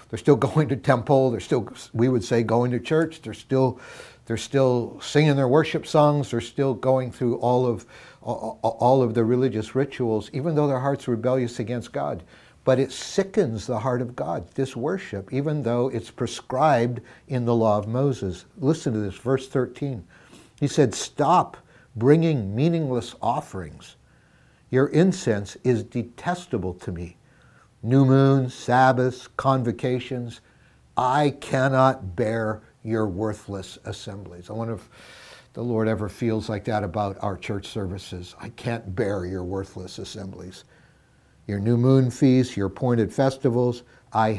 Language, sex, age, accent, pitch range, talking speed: English, male, 60-79, American, 110-135 Hz, 150 wpm